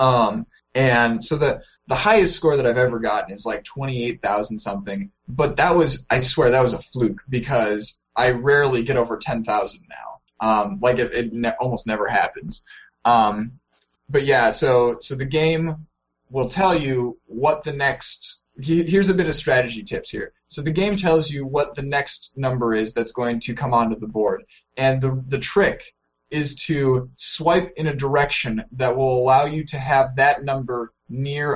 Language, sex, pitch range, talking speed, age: English, male, 120-145 Hz, 185 wpm, 10-29